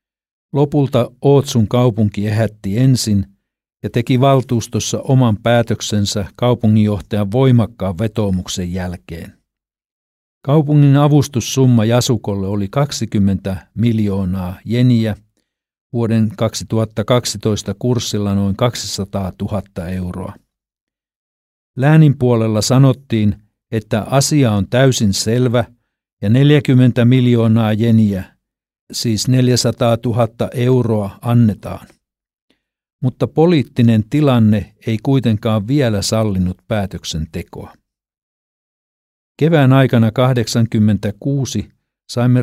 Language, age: Finnish, 60-79